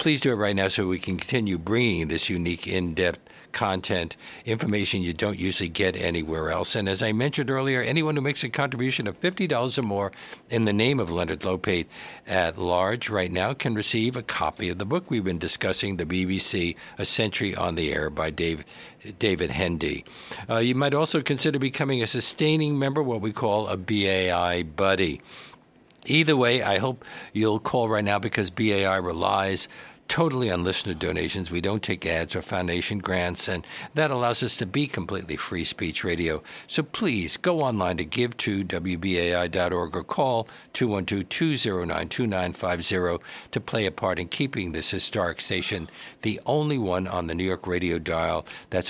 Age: 60-79